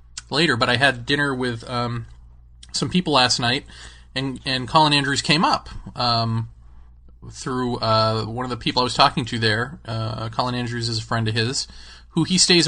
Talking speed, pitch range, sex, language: 190 wpm, 110-140 Hz, male, English